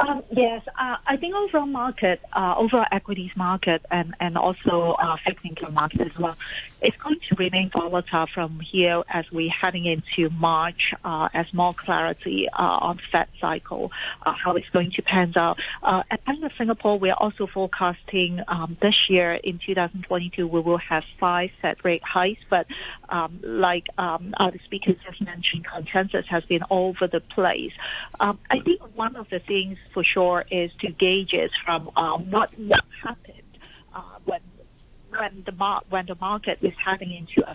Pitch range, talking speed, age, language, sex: 175-200 Hz, 175 wpm, 40-59, English, female